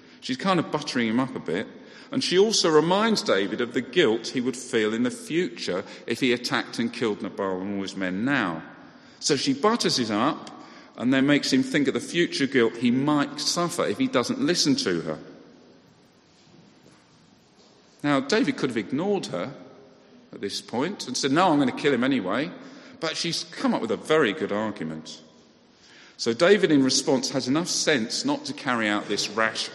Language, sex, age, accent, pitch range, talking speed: English, male, 50-69, British, 115-175 Hz, 195 wpm